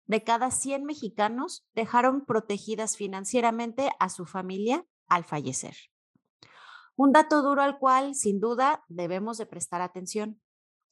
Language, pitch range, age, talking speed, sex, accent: Spanish, 190-270 Hz, 30-49, 125 wpm, female, Mexican